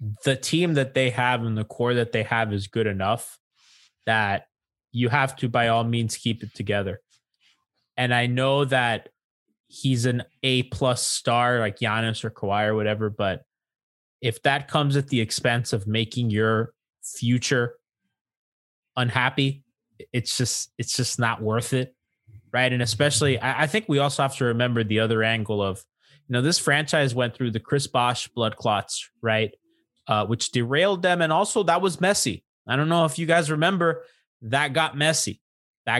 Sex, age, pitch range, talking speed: male, 20-39, 115-145 Hz, 175 wpm